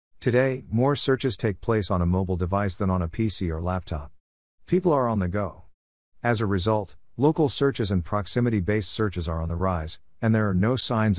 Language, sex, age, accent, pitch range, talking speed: English, male, 50-69, American, 90-110 Hz, 200 wpm